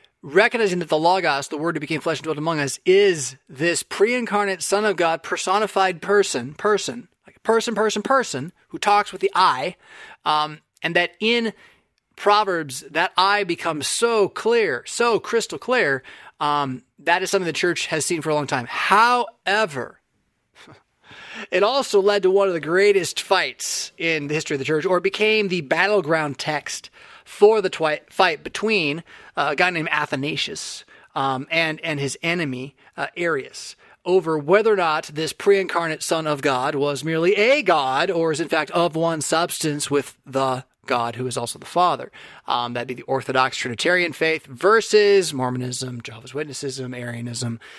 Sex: male